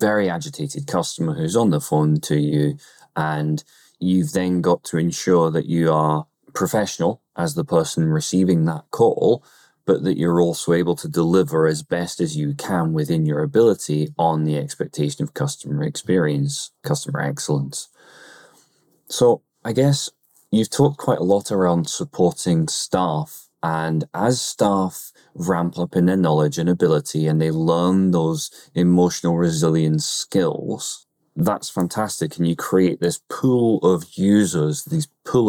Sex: male